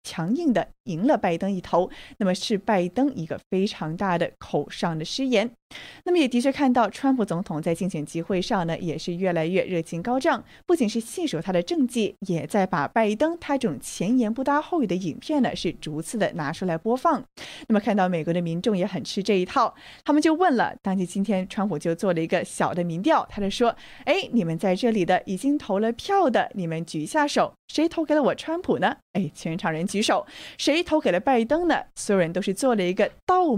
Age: 20-39